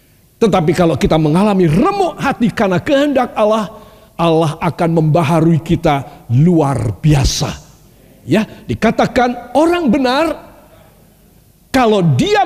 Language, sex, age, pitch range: Indonesian, male, 50-69, 150-245 Hz